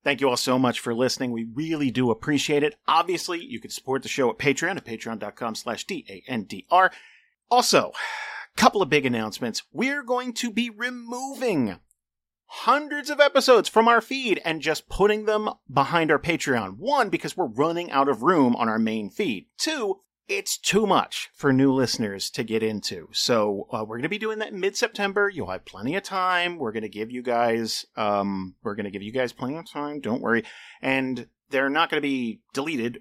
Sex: male